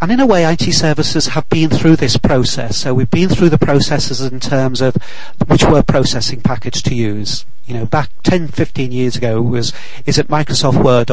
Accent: British